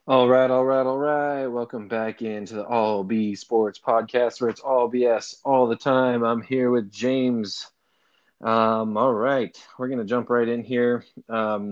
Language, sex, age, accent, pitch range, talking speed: English, male, 20-39, American, 100-120 Hz, 180 wpm